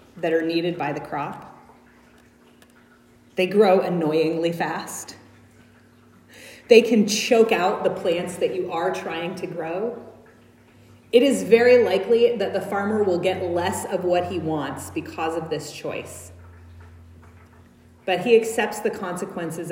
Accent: American